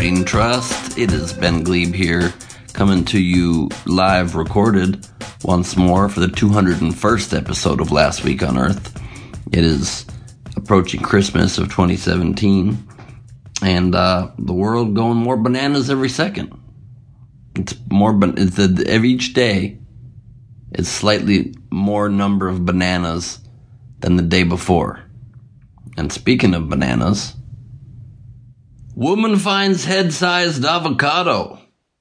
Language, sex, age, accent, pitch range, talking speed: English, male, 30-49, American, 90-120 Hz, 120 wpm